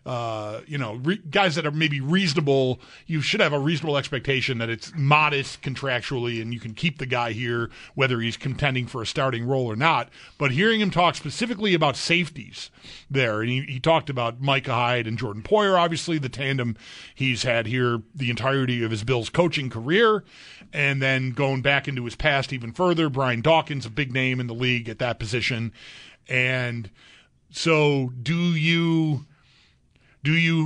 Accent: American